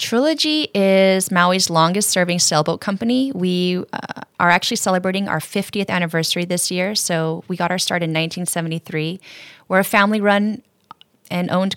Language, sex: English, female